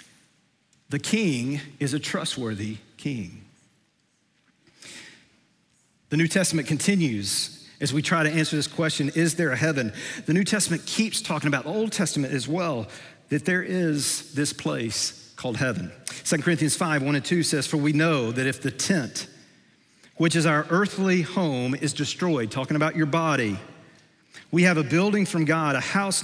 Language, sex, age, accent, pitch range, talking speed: English, male, 40-59, American, 130-170 Hz, 165 wpm